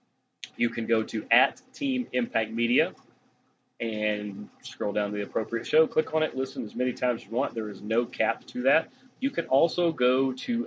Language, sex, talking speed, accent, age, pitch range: English, male, 200 wpm, American, 30-49, 115-140 Hz